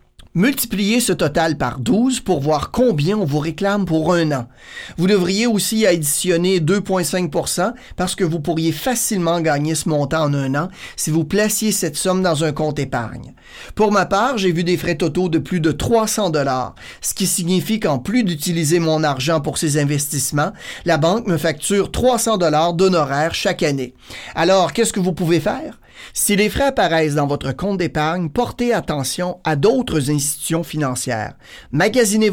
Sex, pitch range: male, 155-200 Hz